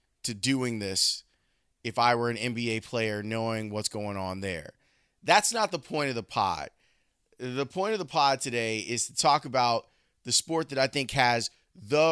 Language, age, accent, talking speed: English, 30-49, American, 190 wpm